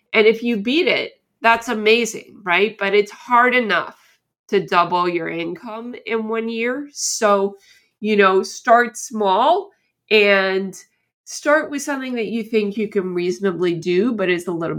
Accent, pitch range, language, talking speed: American, 180-230 Hz, English, 160 wpm